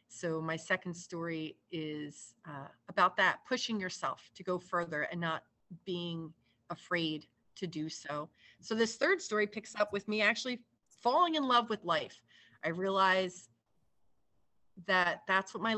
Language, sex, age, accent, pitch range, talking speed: English, female, 30-49, American, 165-200 Hz, 150 wpm